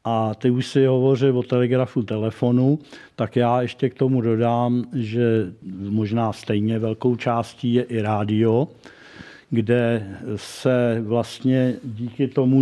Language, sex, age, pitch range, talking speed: Czech, male, 50-69, 115-130 Hz, 130 wpm